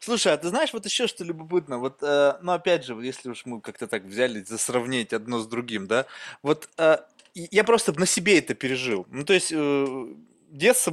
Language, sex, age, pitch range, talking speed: Russian, male, 20-39, 140-210 Hz, 205 wpm